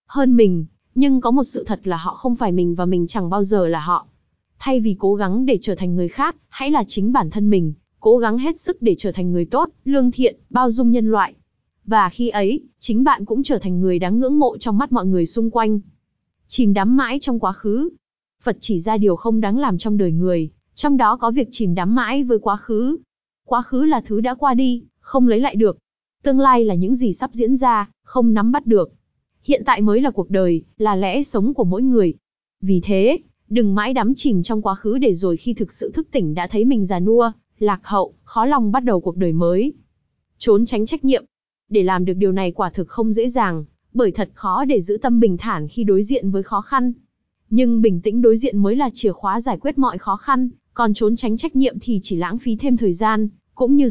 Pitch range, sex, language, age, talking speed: 195-250 Hz, female, Vietnamese, 20-39, 240 wpm